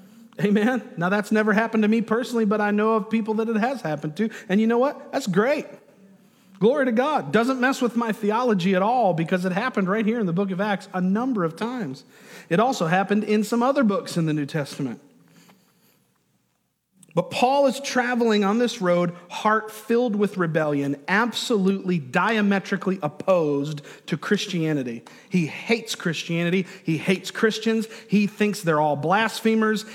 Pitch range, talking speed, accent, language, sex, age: 160-215 Hz, 170 wpm, American, English, male, 40-59